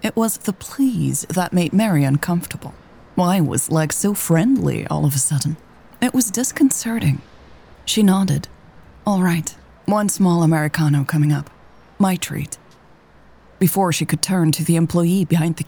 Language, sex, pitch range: English, female, 140-180 Hz